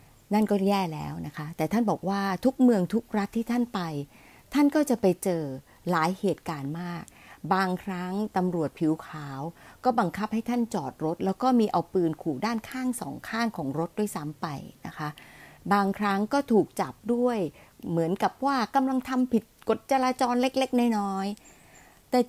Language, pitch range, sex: Thai, 170-235 Hz, female